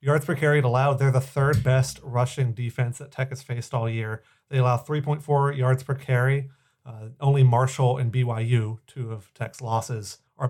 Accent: American